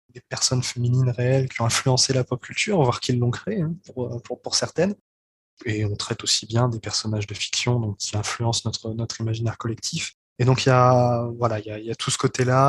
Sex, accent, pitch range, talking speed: male, French, 110-125 Hz, 215 wpm